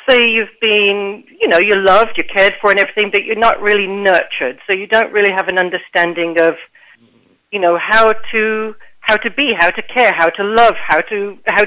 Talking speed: 210 wpm